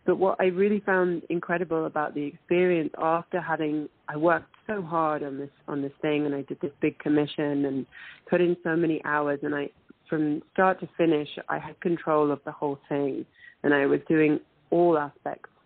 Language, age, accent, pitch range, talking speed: English, 30-49, British, 145-165 Hz, 195 wpm